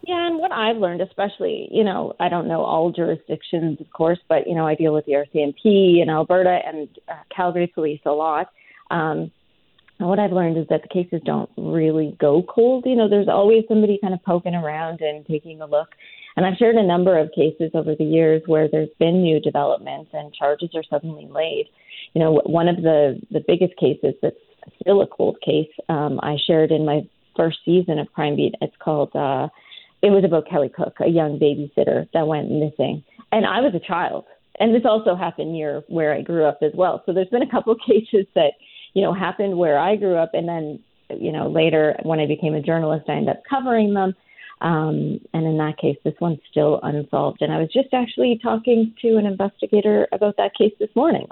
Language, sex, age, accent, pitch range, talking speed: English, female, 30-49, American, 155-215 Hz, 215 wpm